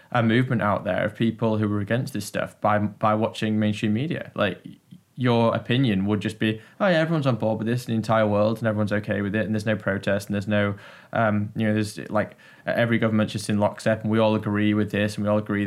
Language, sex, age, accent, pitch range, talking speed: English, male, 10-29, British, 105-115 Hz, 250 wpm